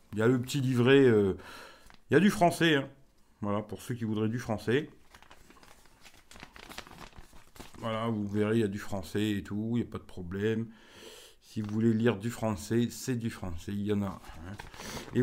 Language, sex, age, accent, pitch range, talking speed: French, male, 50-69, French, 105-125 Hz, 200 wpm